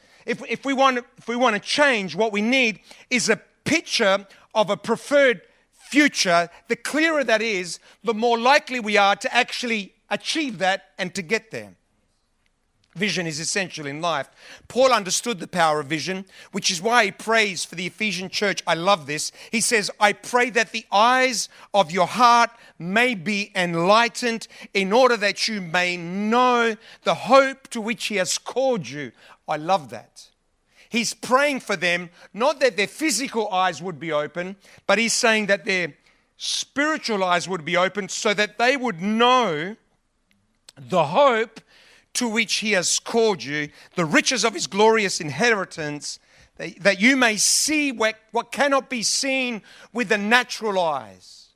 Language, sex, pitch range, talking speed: English, male, 180-240 Hz, 160 wpm